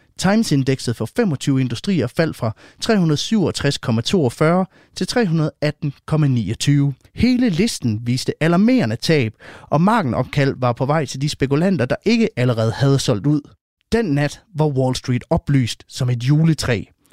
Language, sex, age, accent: Danish, male, 30-49, native